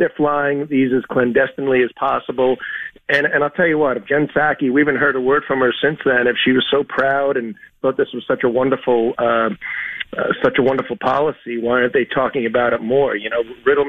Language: English